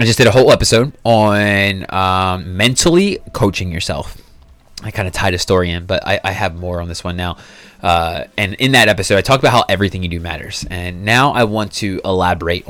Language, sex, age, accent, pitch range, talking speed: English, male, 20-39, American, 90-115 Hz, 215 wpm